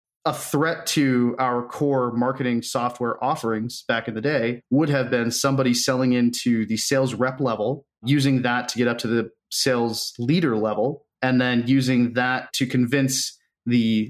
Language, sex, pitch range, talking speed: English, male, 115-135 Hz, 165 wpm